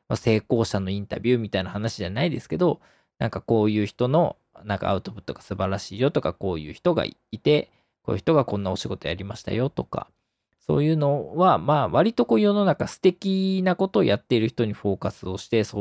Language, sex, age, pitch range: Japanese, male, 20-39, 100-155 Hz